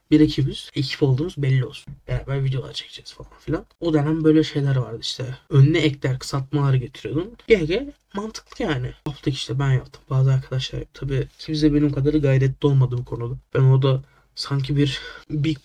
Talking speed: 170 wpm